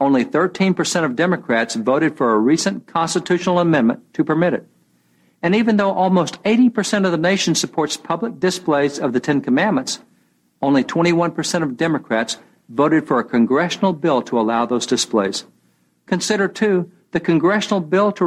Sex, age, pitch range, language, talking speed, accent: male, 60-79, 130-185 Hz, English, 155 wpm, American